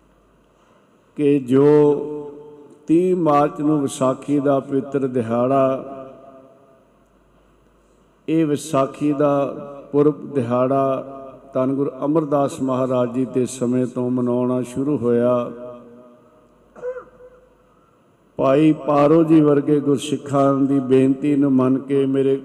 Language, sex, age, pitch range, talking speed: Punjabi, male, 50-69, 125-145 Hz, 95 wpm